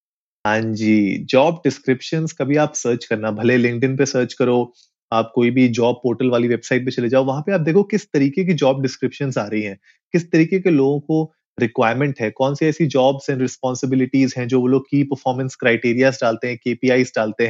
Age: 30-49